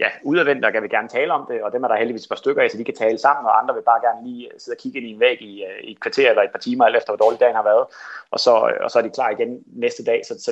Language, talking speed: Danish, 350 wpm